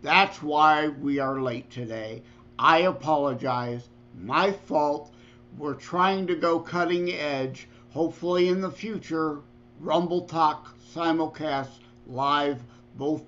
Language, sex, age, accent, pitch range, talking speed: English, male, 50-69, American, 125-175 Hz, 115 wpm